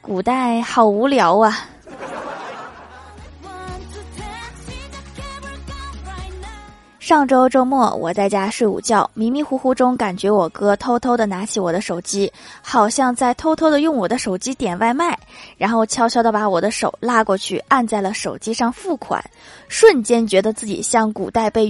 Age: 20-39